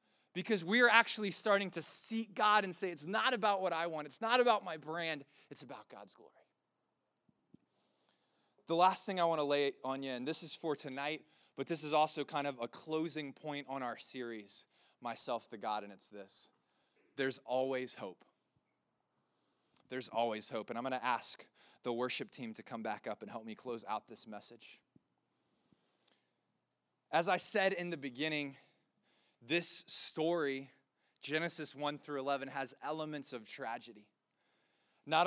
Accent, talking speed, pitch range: American, 165 wpm, 130-165 Hz